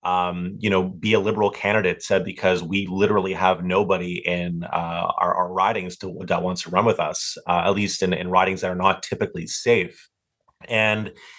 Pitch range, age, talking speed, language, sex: 90-105 Hz, 30-49, 190 wpm, English, male